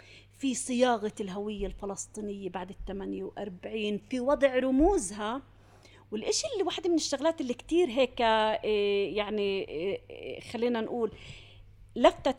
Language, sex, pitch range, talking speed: Arabic, female, 205-270 Hz, 105 wpm